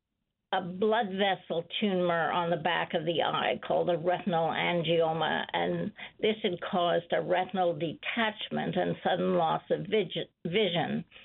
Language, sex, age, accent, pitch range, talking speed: English, female, 60-79, American, 175-205 Hz, 140 wpm